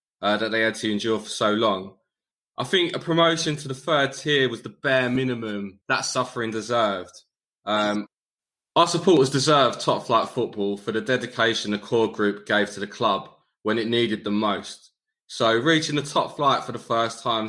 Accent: British